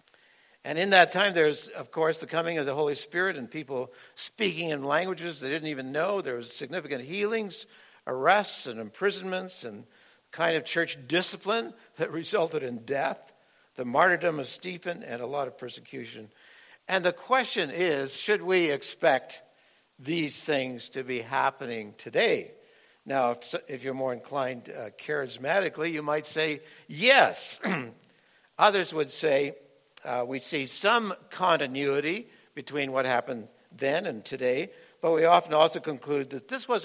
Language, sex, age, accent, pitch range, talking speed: English, male, 60-79, American, 135-185 Hz, 150 wpm